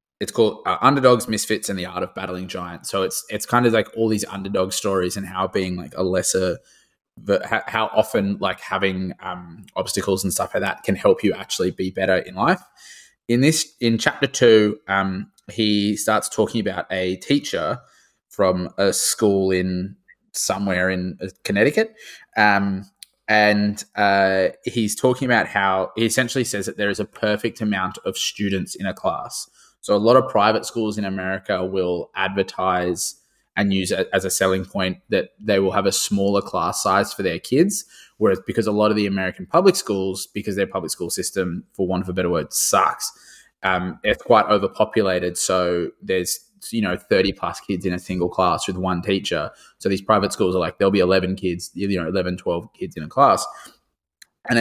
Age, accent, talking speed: 20-39, Australian, 190 wpm